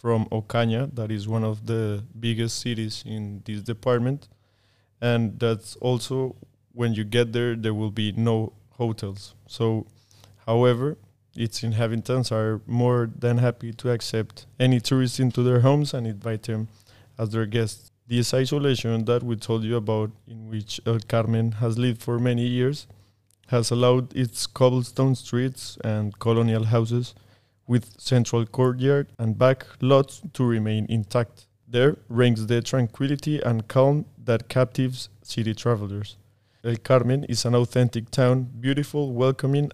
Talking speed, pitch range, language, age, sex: 145 wpm, 110-125 Hz, English, 20-39, male